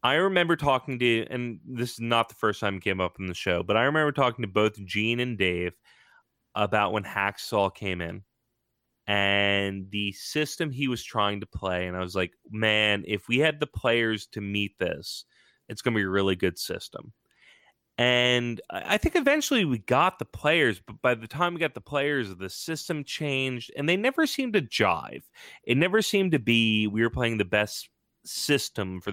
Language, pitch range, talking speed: English, 100-140 Hz, 200 wpm